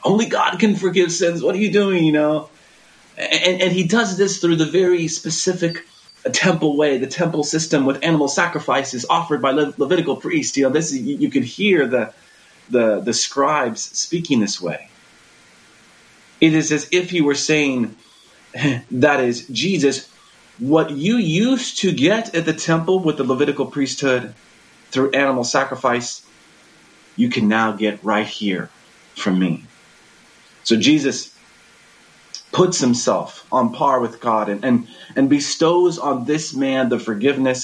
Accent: American